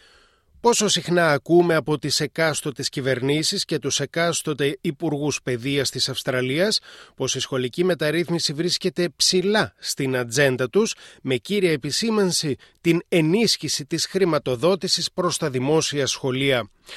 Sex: male